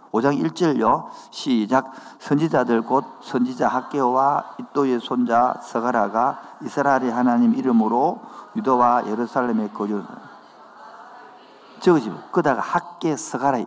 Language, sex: Korean, male